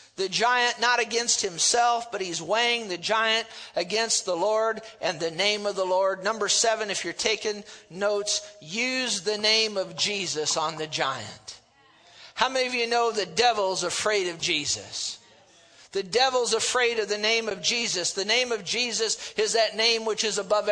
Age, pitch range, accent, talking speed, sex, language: 50-69, 200-235 Hz, American, 175 wpm, male, English